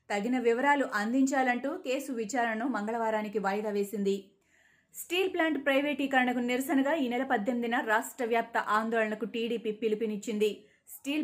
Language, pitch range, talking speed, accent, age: Telugu, 220-270 Hz, 110 wpm, native, 20-39